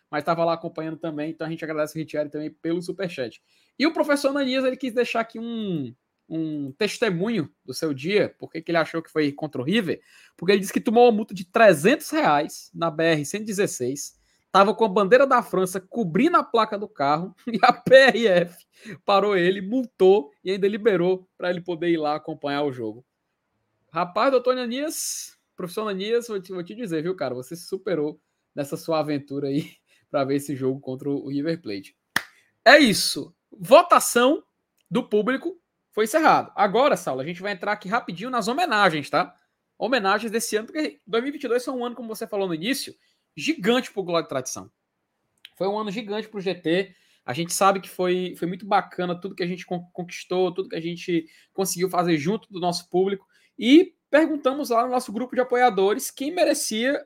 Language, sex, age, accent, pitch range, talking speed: Portuguese, male, 20-39, Brazilian, 165-235 Hz, 190 wpm